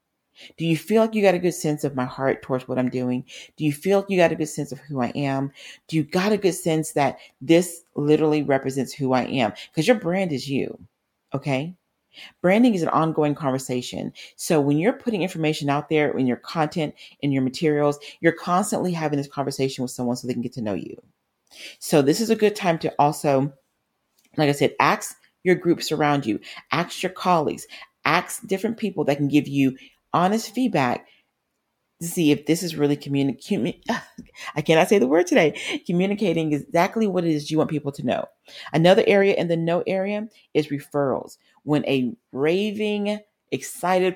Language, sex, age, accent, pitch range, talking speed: English, female, 40-59, American, 135-175 Hz, 195 wpm